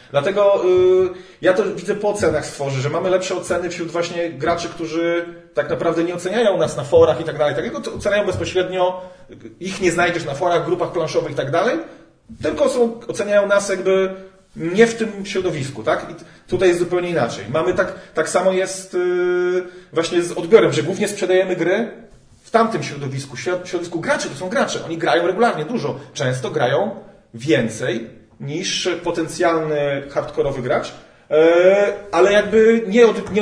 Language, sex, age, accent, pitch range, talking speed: Polish, male, 40-59, native, 155-190 Hz, 165 wpm